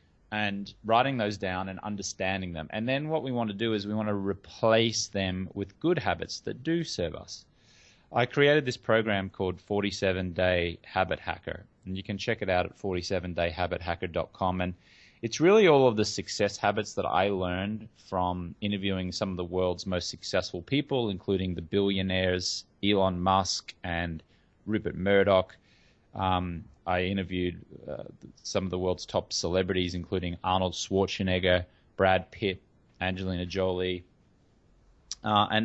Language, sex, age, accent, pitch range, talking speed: English, male, 20-39, Australian, 90-110 Hz, 150 wpm